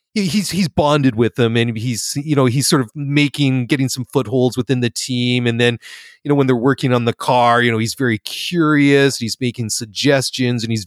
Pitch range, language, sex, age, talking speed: 120-140 Hz, English, male, 30-49, 215 wpm